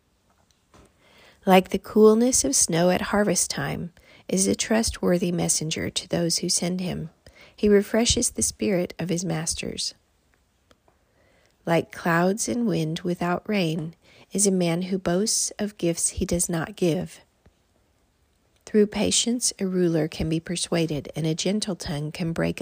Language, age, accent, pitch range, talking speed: English, 40-59, American, 155-195 Hz, 145 wpm